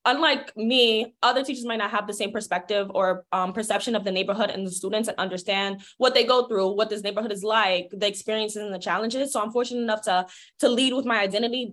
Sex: female